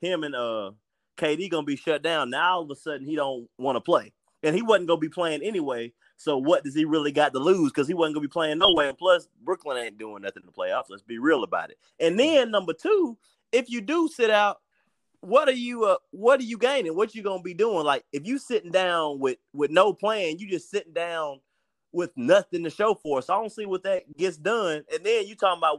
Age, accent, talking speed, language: 30-49, American, 245 wpm, English